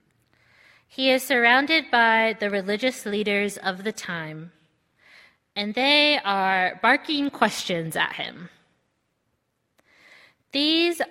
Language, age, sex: English, 20-39, female